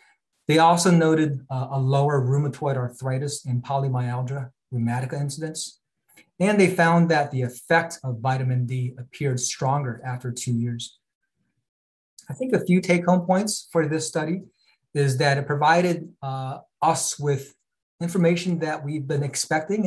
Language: English